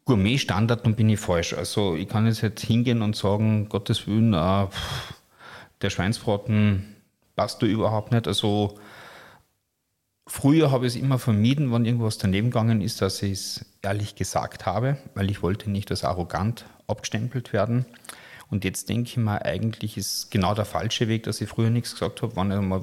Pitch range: 100-115 Hz